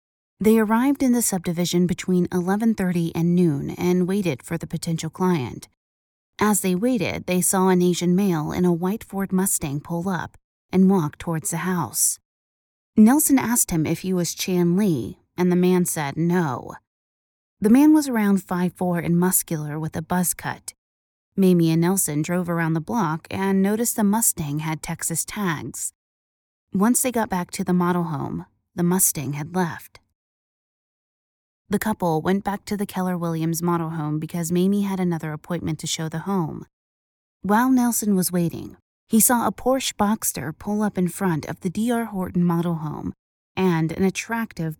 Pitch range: 160-195 Hz